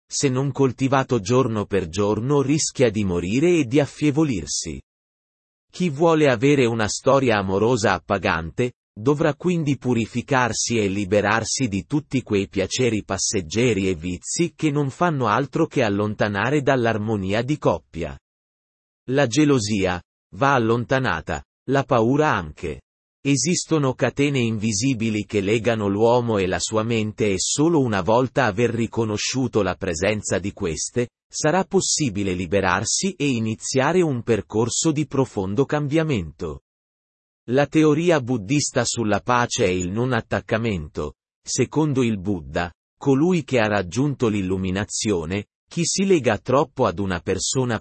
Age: 30-49